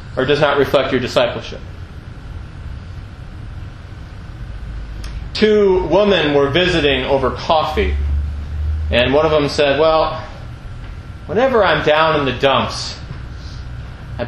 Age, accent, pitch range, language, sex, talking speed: 30-49, American, 105-170 Hz, English, male, 105 wpm